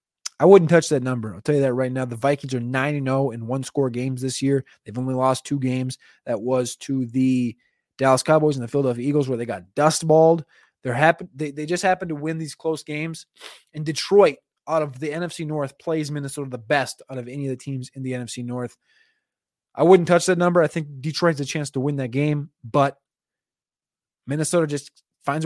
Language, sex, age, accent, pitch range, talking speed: English, male, 20-39, American, 135-160 Hz, 210 wpm